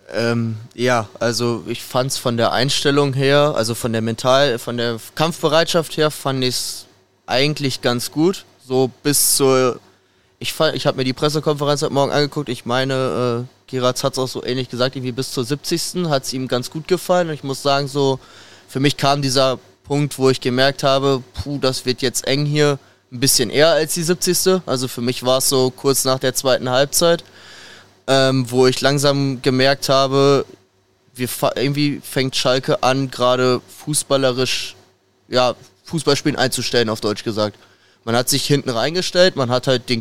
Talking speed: 185 wpm